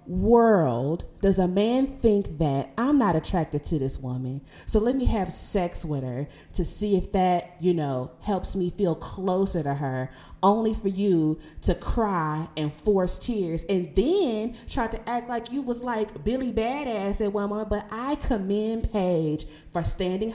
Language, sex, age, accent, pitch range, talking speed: English, female, 20-39, American, 155-225 Hz, 175 wpm